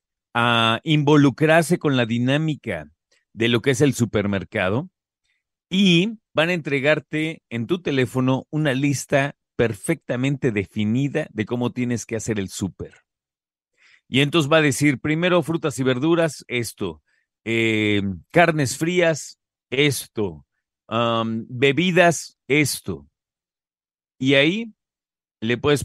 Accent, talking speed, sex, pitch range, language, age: Mexican, 115 wpm, male, 115-150 Hz, Spanish, 40-59